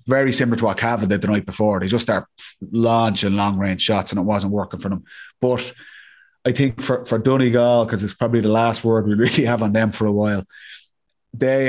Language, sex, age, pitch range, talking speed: English, male, 30-49, 105-125 Hz, 215 wpm